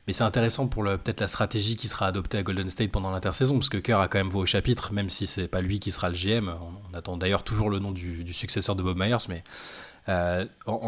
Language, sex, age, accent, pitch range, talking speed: French, male, 20-39, French, 95-115 Hz, 265 wpm